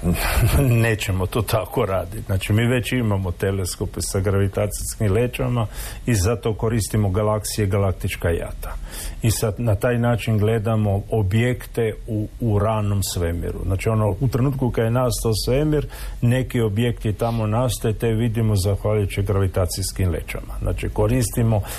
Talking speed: 130 wpm